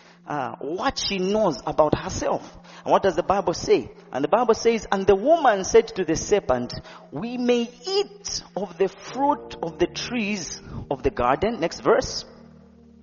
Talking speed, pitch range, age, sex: 170 wpm, 200-260 Hz, 40-59, male